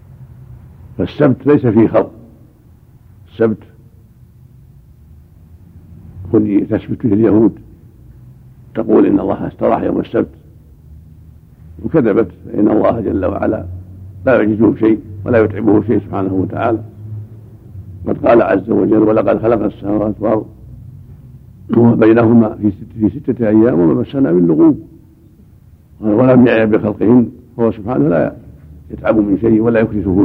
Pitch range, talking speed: 95-120 Hz, 105 wpm